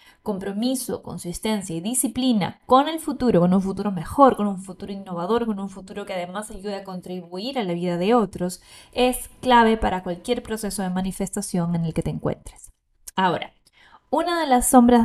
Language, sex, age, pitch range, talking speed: Spanish, female, 10-29, 185-240 Hz, 180 wpm